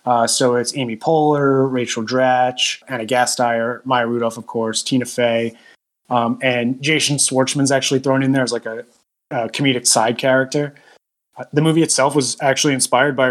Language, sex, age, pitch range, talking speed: English, male, 20-39, 125-150 Hz, 170 wpm